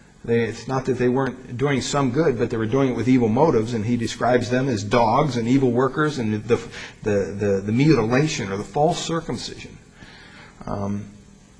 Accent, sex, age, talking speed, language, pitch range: American, male, 40-59, 190 wpm, English, 120-155 Hz